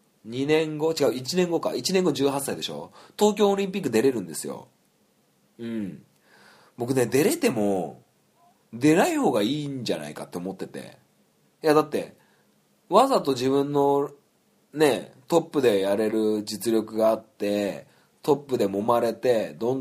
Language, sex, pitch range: Japanese, male, 110-160 Hz